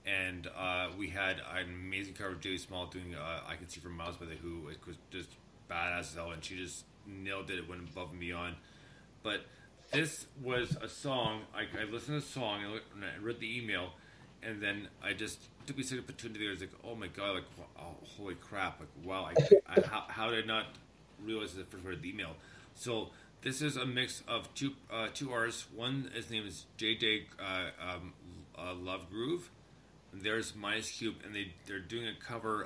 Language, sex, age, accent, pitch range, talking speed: English, male, 30-49, American, 95-150 Hz, 215 wpm